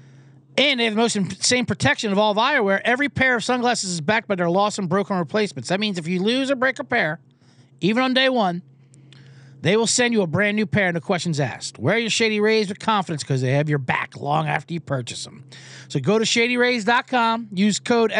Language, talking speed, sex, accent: English, 230 wpm, male, American